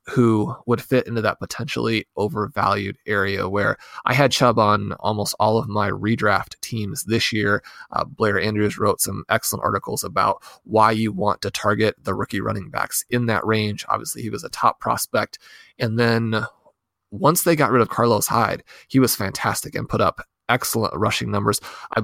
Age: 30-49